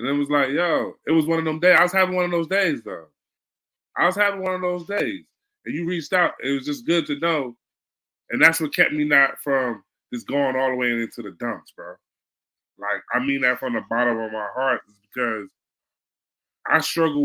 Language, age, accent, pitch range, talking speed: English, 20-39, American, 125-180 Hz, 230 wpm